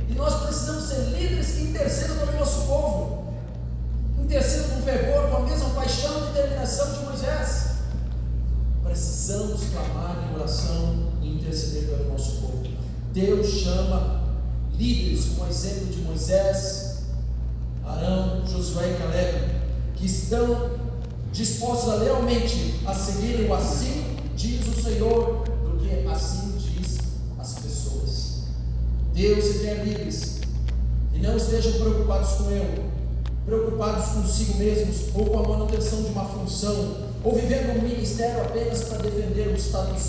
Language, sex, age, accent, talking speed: Portuguese, male, 40-59, Brazilian, 130 wpm